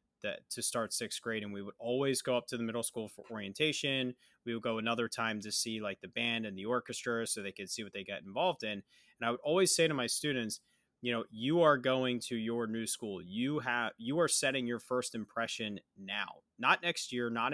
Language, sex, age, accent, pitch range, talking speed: English, male, 30-49, American, 110-130 Hz, 235 wpm